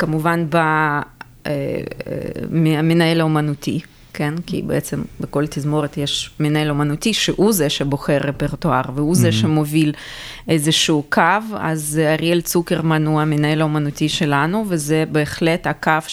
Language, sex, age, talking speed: Hebrew, female, 20-39, 110 wpm